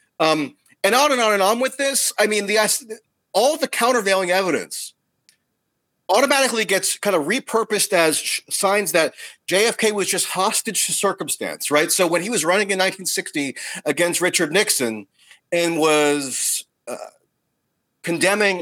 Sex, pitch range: male, 145-205 Hz